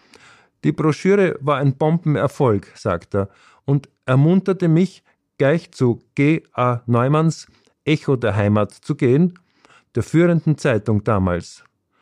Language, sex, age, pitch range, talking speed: German, male, 50-69, 105-145 Hz, 120 wpm